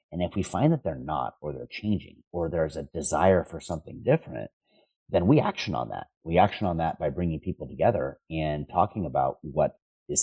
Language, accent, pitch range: English, American, 75-100 Hz